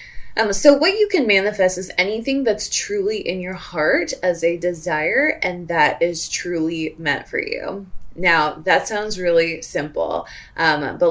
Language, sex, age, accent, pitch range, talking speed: English, female, 20-39, American, 165-240 Hz, 160 wpm